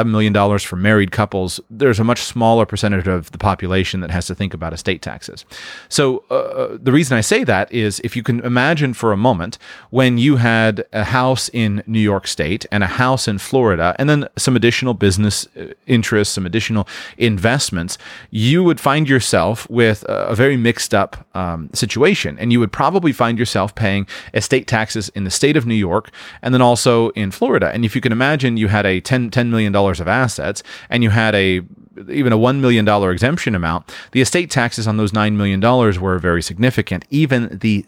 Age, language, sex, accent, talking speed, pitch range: 30-49, English, male, American, 200 wpm, 100-125 Hz